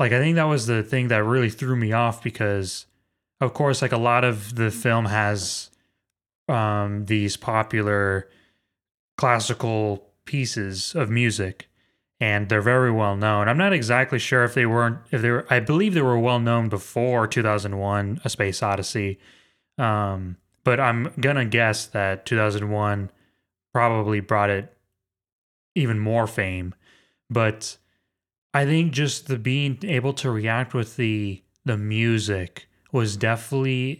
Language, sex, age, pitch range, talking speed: English, male, 20-39, 100-125 Hz, 150 wpm